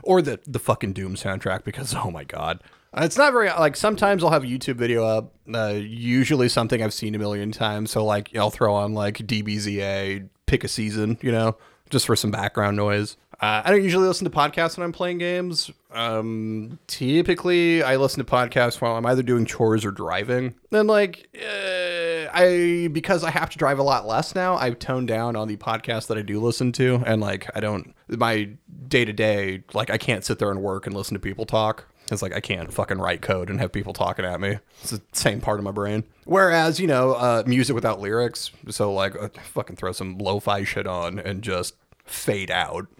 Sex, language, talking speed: male, English, 220 wpm